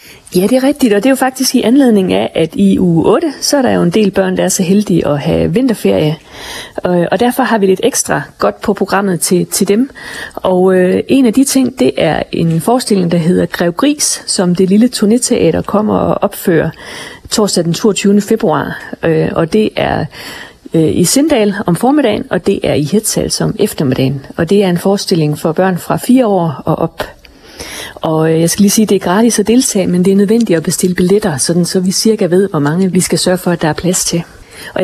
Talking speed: 215 wpm